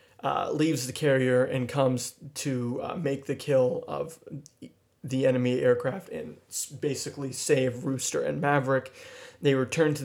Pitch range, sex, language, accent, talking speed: 130-160 Hz, male, English, American, 145 wpm